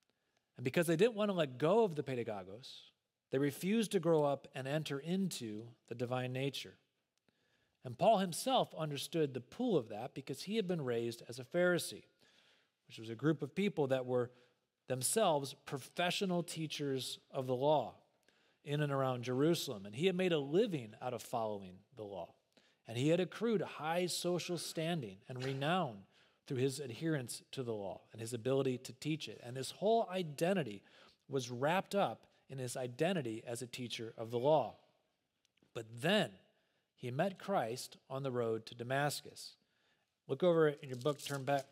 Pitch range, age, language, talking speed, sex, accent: 125-165 Hz, 40-59, English, 175 wpm, male, American